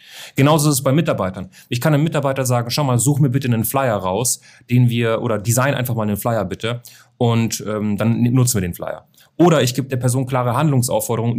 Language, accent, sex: German, German, male